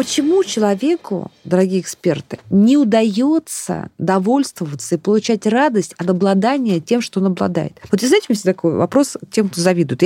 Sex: female